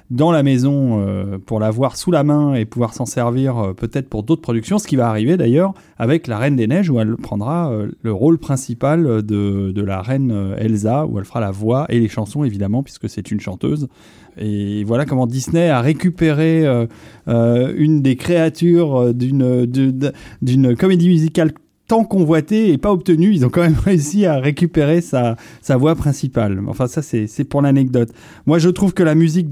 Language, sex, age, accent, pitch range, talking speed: French, male, 30-49, French, 115-150 Hz, 190 wpm